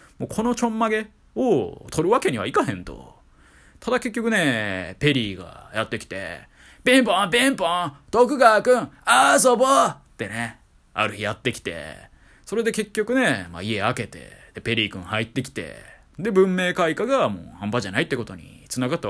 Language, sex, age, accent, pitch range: Japanese, male, 20-39, native, 105-170 Hz